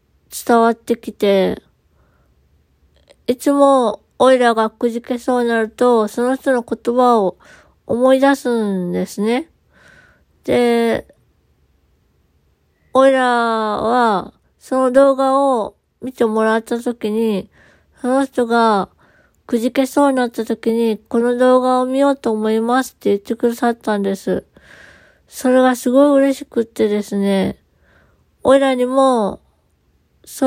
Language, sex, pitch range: Japanese, female, 210-255 Hz